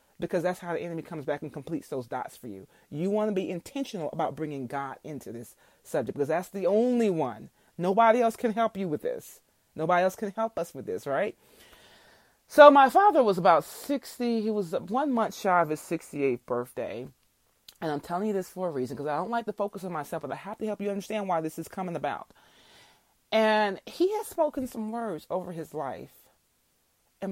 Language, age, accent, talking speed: English, 30-49, American, 215 wpm